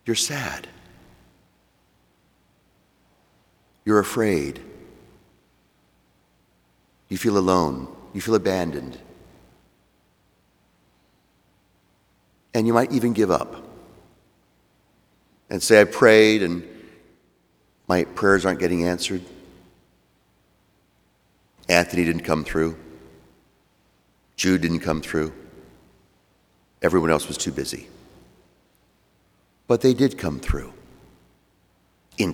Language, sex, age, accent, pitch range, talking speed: English, male, 50-69, American, 75-110 Hz, 85 wpm